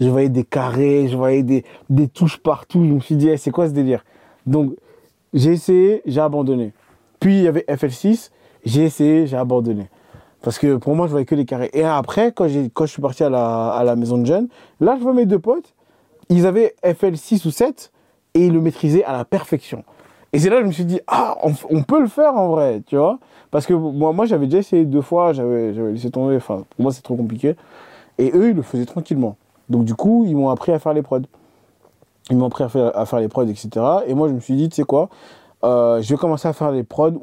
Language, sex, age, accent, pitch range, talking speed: French, male, 20-39, French, 120-160 Hz, 250 wpm